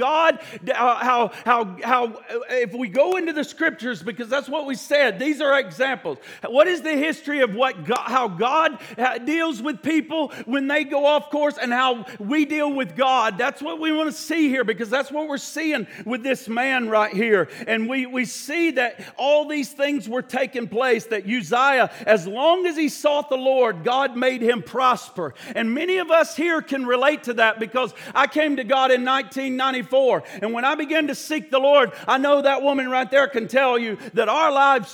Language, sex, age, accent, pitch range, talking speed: English, male, 50-69, American, 245-300 Hz, 205 wpm